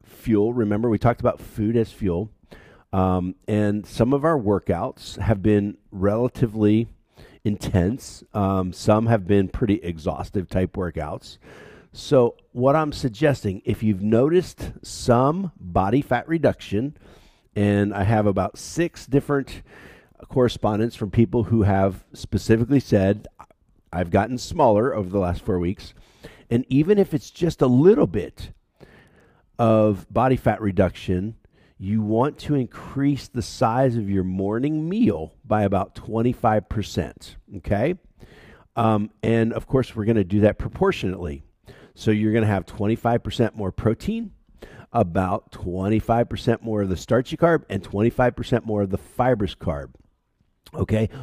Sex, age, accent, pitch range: male, 50-69, American, 100-125 Hz